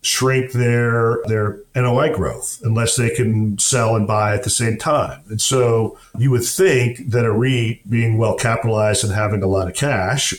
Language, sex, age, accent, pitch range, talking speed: English, male, 50-69, American, 105-125 Hz, 180 wpm